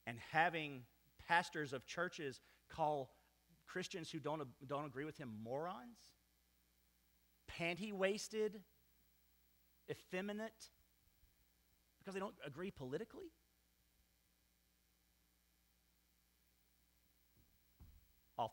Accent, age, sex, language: American, 40-59, male, English